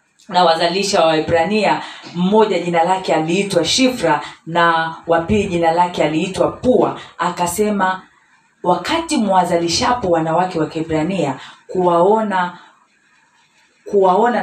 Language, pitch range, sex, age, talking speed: Swahili, 155-205 Hz, female, 40-59, 95 wpm